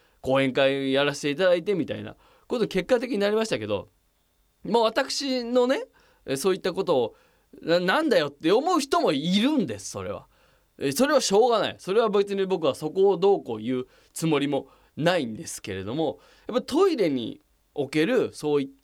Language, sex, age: Japanese, male, 20-39